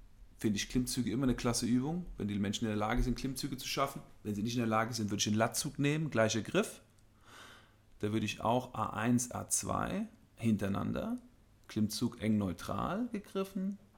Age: 40-59